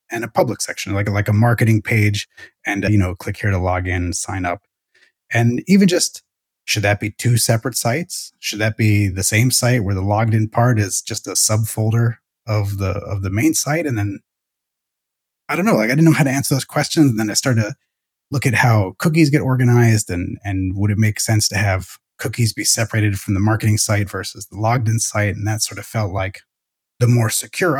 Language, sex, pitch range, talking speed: English, male, 100-120 Hz, 225 wpm